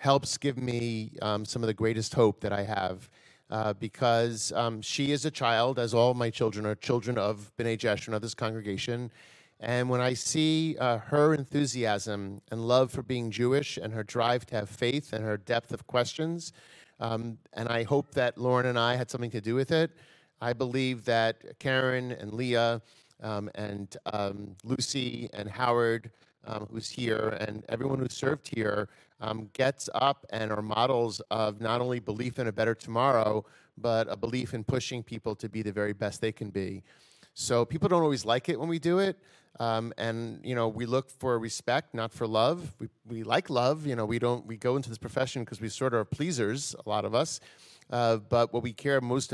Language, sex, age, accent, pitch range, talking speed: English, male, 40-59, American, 110-130 Hz, 200 wpm